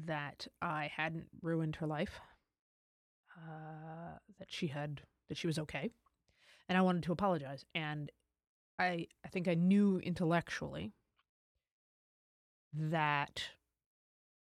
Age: 30-49